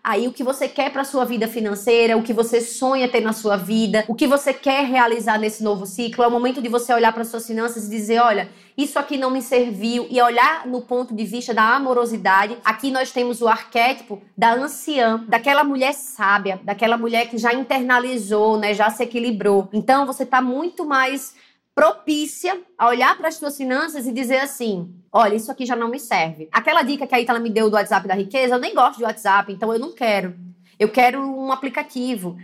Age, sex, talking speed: 20-39, female, 215 wpm